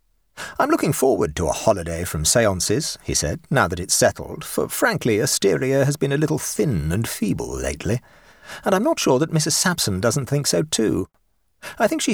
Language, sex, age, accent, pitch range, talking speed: English, male, 40-59, British, 110-160 Hz, 195 wpm